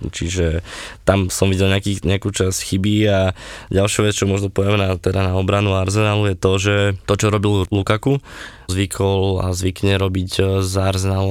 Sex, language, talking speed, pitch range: male, Slovak, 165 wpm, 90-100 Hz